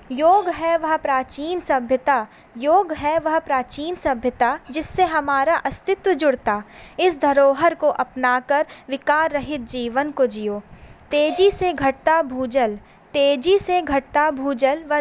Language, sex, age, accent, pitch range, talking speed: Hindi, female, 20-39, native, 265-320 Hz, 130 wpm